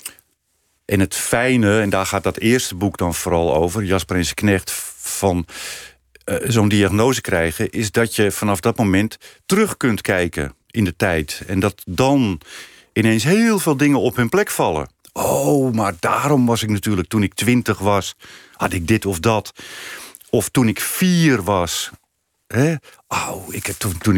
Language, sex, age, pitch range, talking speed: Dutch, male, 50-69, 95-120 Hz, 155 wpm